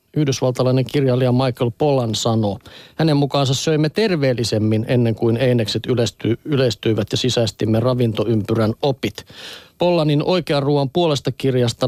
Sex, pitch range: male, 120-145 Hz